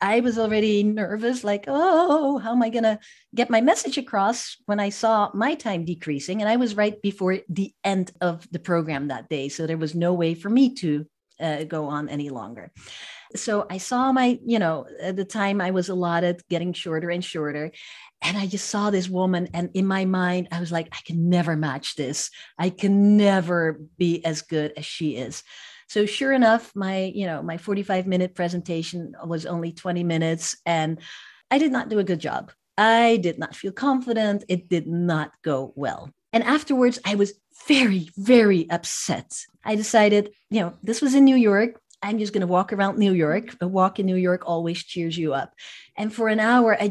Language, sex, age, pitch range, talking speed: English, female, 40-59, 170-215 Hz, 200 wpm